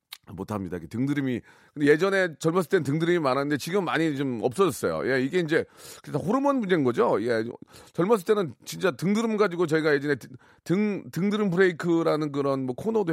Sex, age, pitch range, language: male, 40-59, 125-170 Hz, Korean